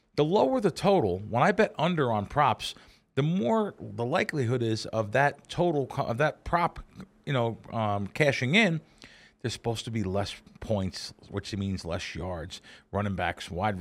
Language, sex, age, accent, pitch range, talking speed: English, male, 40-59, American, 105-140 Hz, 170 wpm